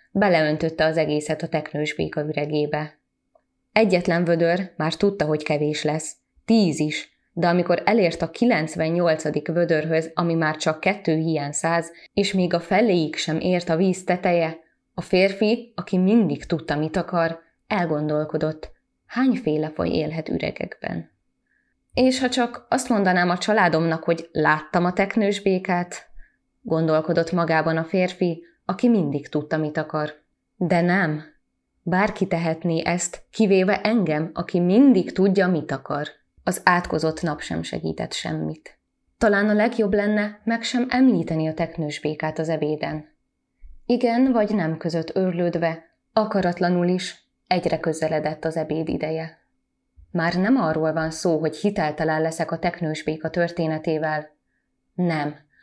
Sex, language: female, Hungarian